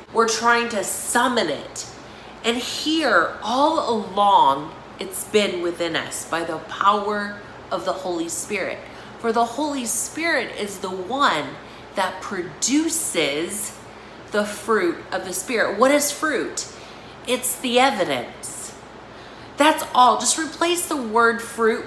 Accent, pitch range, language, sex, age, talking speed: American, 200-265 Hz, English, female, 30-49, 130 wpm